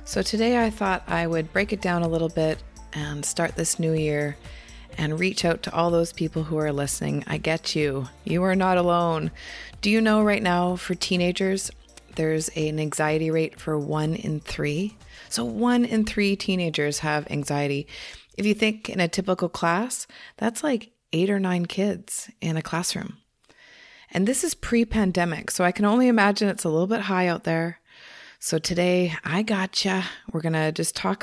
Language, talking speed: English, 185 wpm